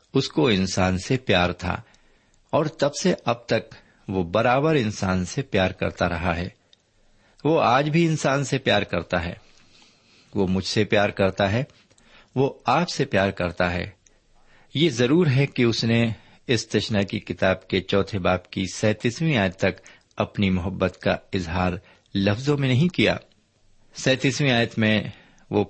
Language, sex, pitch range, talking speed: Urdu, male, 95-130 Hz, 160 wpm